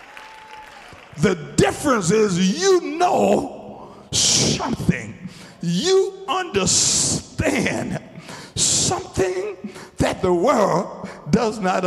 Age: 60-79